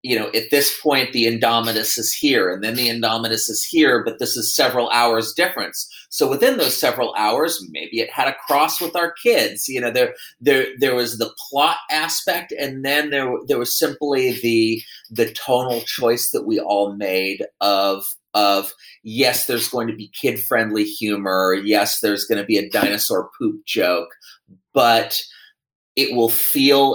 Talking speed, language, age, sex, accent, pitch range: 180 wpm, English, 30-49, male, American, 105-120 Hz